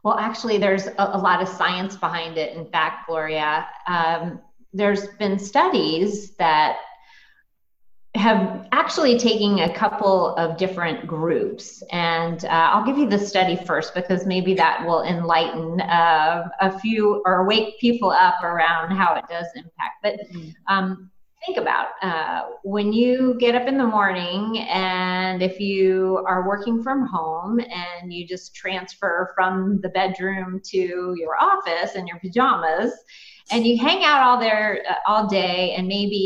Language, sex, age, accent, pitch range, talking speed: English, female, 30-49, American, 180-230 Hz, 155 wpm